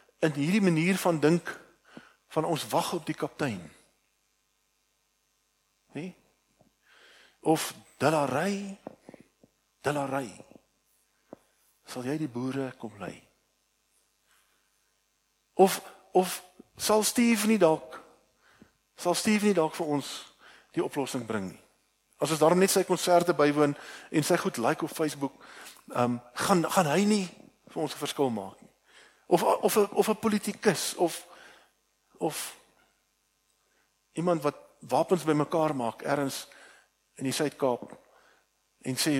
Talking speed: 115 wpm